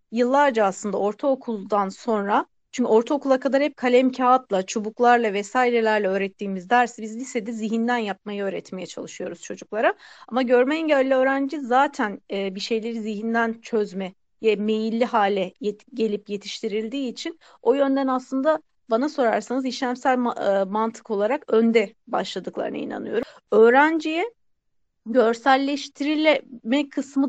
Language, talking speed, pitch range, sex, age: Turkish, 115 wpm, 220-275 Hz, female, 40-59